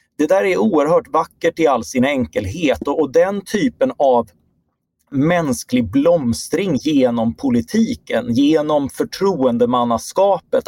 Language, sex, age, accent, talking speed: Swedish, male, 30-49, native, 110 wpm